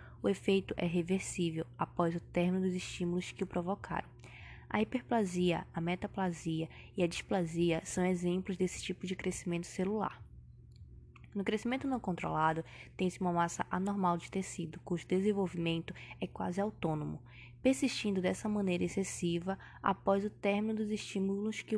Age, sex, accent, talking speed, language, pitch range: 10-29, female, Brazilian, 140 wpm, Portuguese, 175-205 Hz